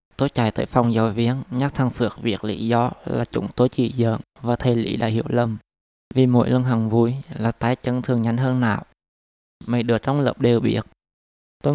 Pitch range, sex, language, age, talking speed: 110-130 Hz, male, Vietnamese, 20-39, 215 wpm